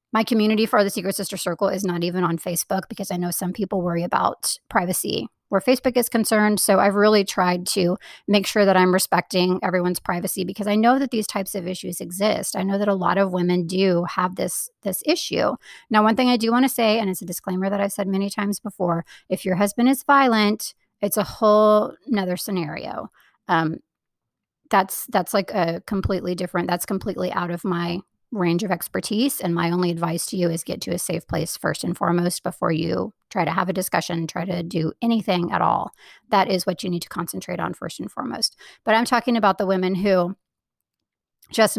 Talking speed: 210 wpm